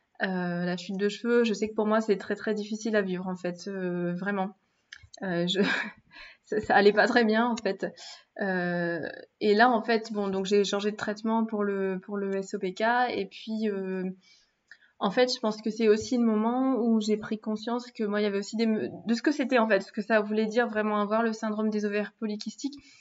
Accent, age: French, 20-39